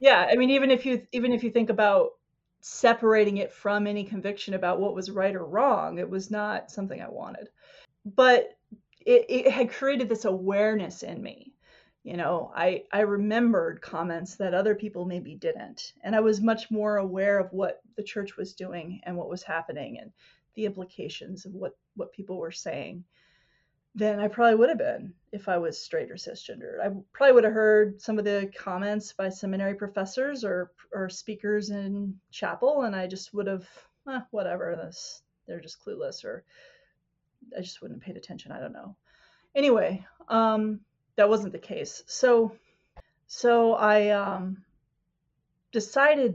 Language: English